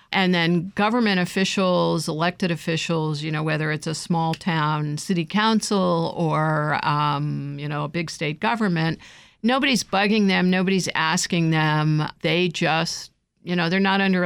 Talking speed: 150 wpm